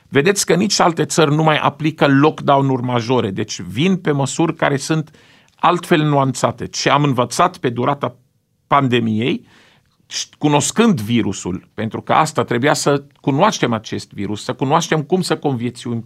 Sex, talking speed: male, 145 wpm